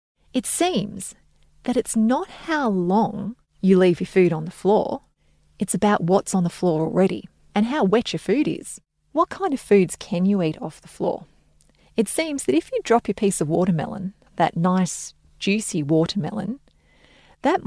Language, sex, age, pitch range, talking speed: English, female, 30-49, 165-215 Hz, 175 wpm